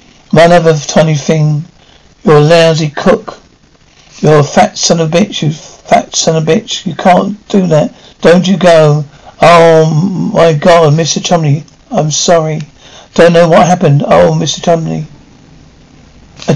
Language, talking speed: English, 155 wpm